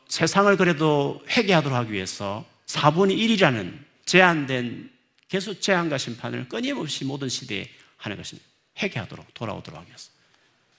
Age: 40-59